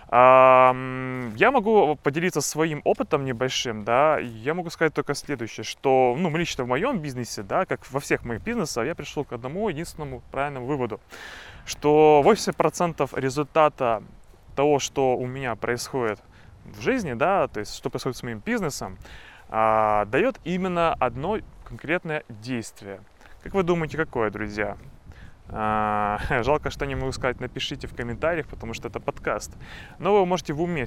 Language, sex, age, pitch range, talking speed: Russian, male, 20-39, 115-155 Hz, 150 wpm